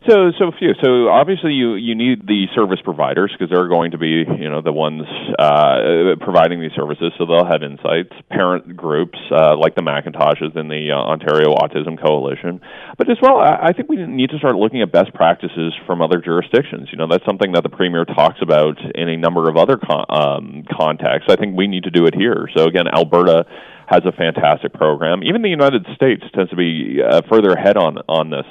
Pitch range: 85-115 Hz